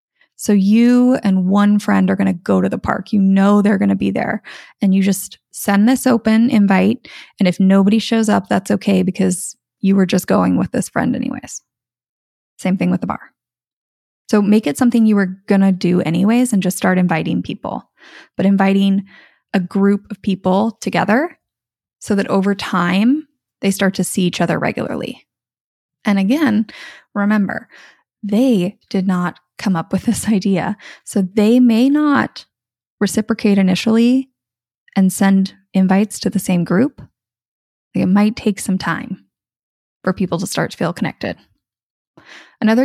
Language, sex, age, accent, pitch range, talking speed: English, female, 20-39, American, 190-220 Hz, 165 wpm